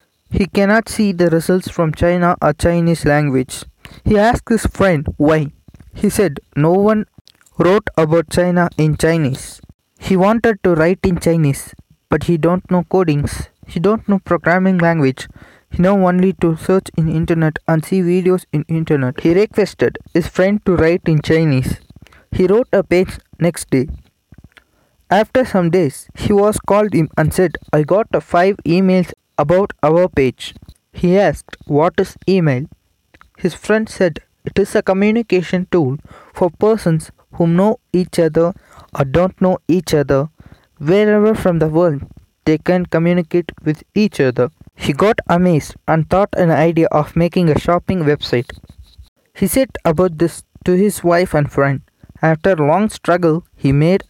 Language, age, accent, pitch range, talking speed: Tamil, 20-39, native, 155-190 Hz, 155 wpm